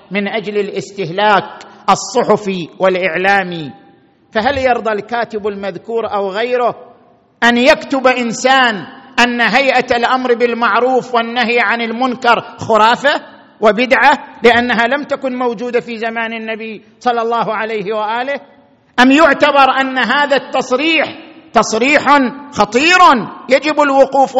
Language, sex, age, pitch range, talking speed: Arabic, male, 50-69, 220-265 Hz, 105 wpm